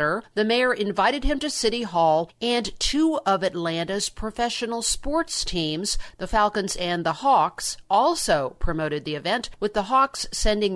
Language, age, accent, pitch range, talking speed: English, 50-69, American, 170-220 Hz, 150 wpm